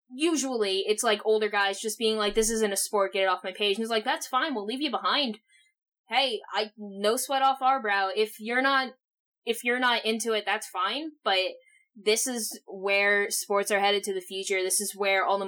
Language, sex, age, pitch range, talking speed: English, female, 10-29, 195-245 Hz, 225 wpm